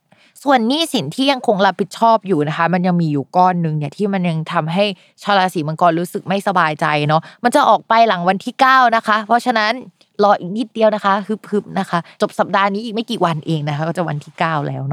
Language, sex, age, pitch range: Thai, female, 20-39, 170-225 Hz